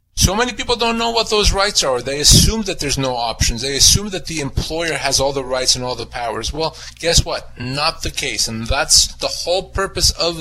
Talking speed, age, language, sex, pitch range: 230 wpm, 30-49, English, male, 125-155 Hz